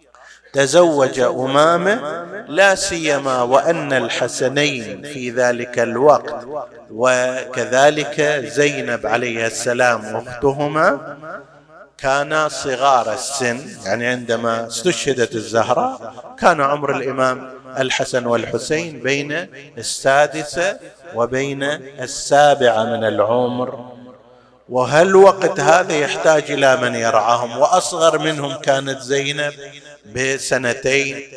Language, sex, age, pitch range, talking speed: Arabic, male, 50-69, 120-155 Hz, 85 wpm